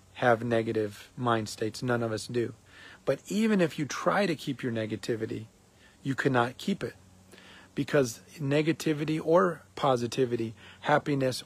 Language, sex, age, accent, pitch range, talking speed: English, male, 40-59, American, 95-155 Hz, 135 wpm